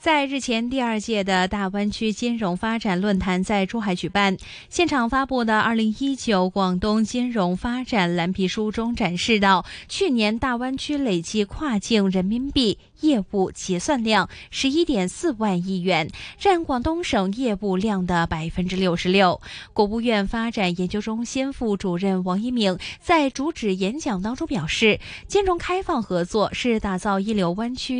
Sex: female